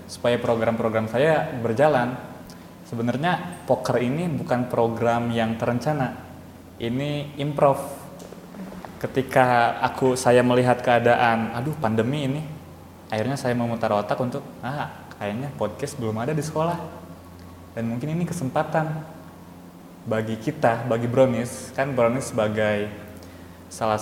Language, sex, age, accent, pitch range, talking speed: Indonesian, male, 20-39, native, 105-120 Hz, 110 wpm